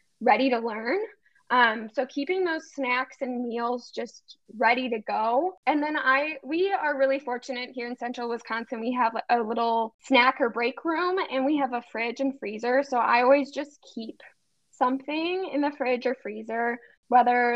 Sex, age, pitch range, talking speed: female, 10-29, 235-295 Hz, 180 wpm